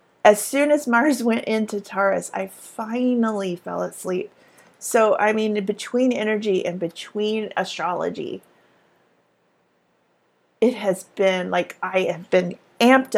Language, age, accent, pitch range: English, 40-59, American, 185-230 Hz